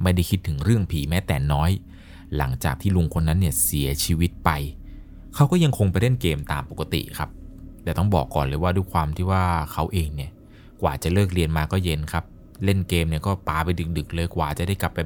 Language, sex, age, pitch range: Thai, male, 20-39, 80-95 Hz